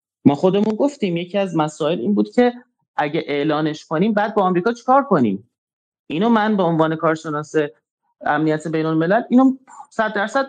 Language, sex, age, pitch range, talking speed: Persian, male, 30-49, 150-225 Hz, 165 wpm